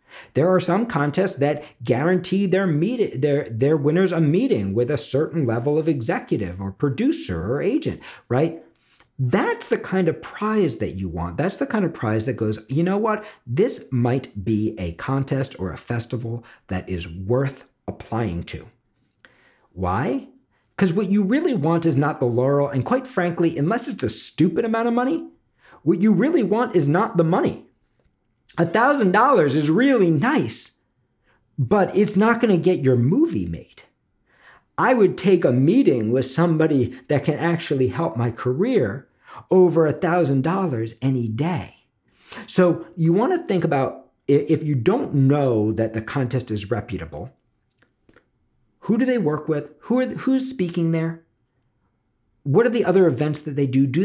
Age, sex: 50-69, male